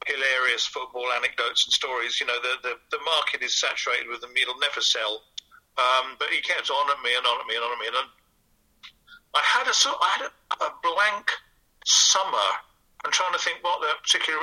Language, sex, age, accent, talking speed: English, male, 50-69, British, 215 wpm